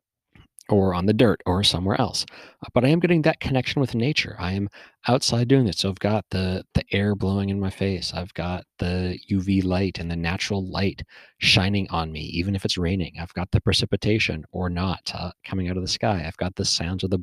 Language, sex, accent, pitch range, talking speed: English, male, American, 85-105 Hz, 225 wpm